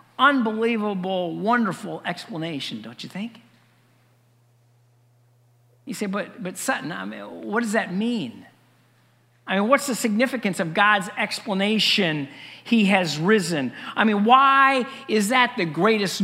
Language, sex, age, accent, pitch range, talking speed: English, male, 50-69, American, 160-230 Hz, 130 wpm